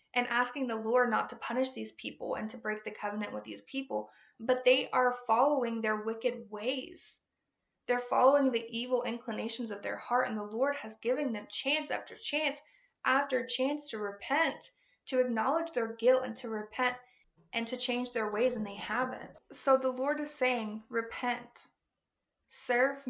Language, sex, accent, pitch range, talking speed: English, female, American, 220-260 Hz, 175 wpm